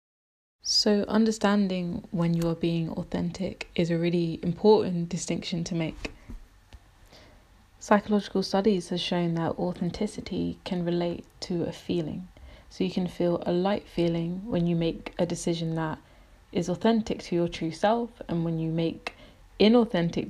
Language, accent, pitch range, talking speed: English, British, 165-190 Hz, 145 wpm